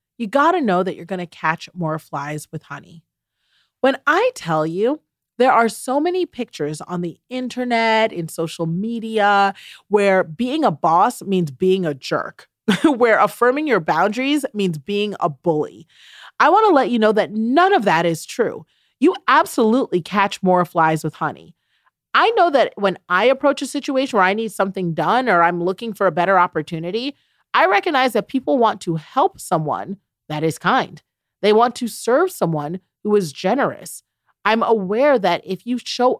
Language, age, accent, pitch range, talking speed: English, 30-49, American, 170-255 Hz, 175 wpm